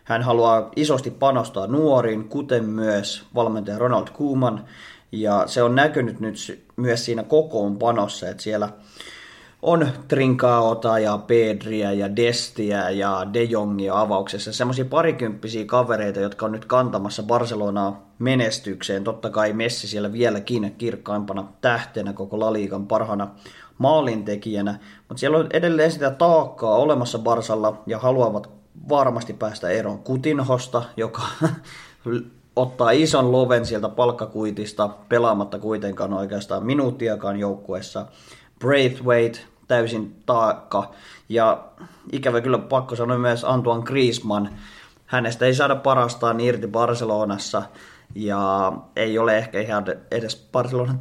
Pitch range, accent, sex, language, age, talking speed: 105-125 Hz, native, male, Finnish, 30-49, 115 wpm